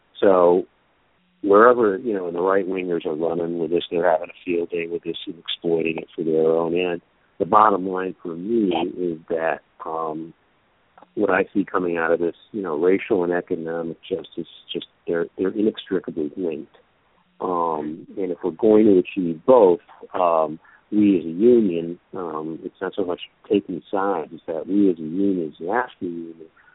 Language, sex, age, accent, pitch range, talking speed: English, male, 50-69, American, 80-95 Hz, 180 wpm